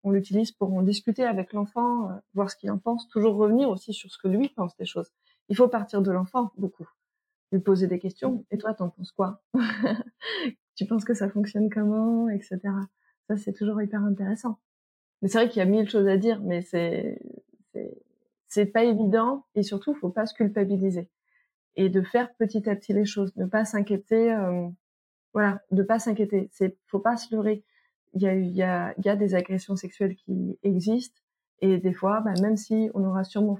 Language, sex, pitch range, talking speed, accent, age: French, female, 195-225 Hz, 205 wpm, French, 20-39